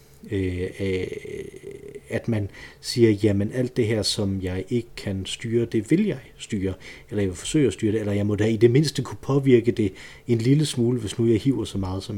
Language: Danish